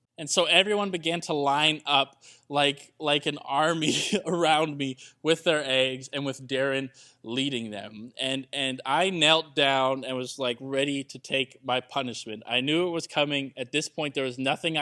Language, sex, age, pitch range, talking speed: English, male, 20-39, 120-145 Hz, 180 wpm